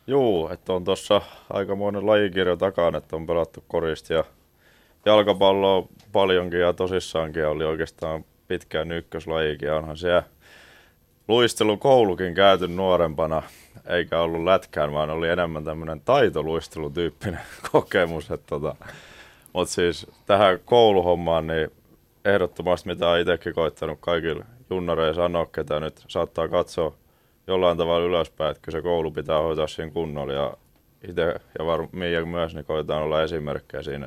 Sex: male